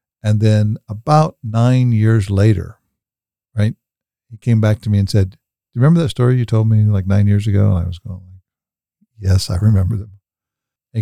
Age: 50-69